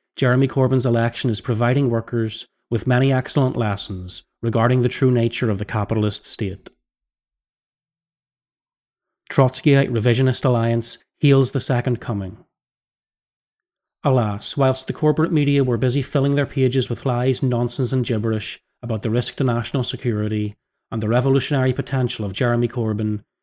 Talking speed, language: 135 wpm, English